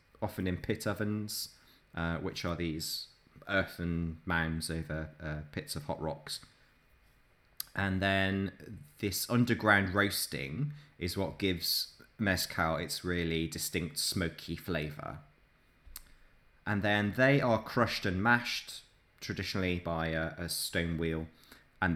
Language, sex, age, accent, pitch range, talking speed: English, male, 20-39, British, 80-105 Hz, 120 wpm